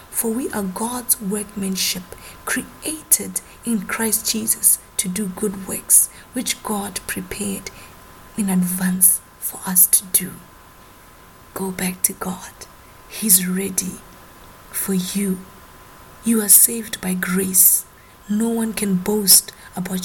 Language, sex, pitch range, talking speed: English, female, 185-210 Hz, 120 wpm